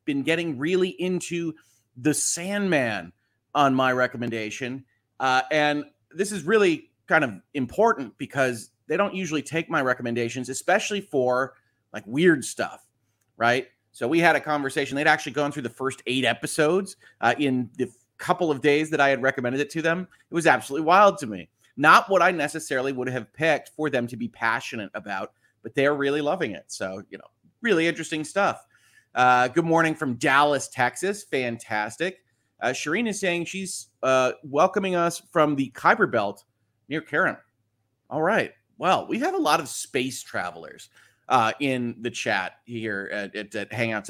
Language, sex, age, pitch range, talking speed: English, male, 30-49, 115-160 Hz, 170 wpm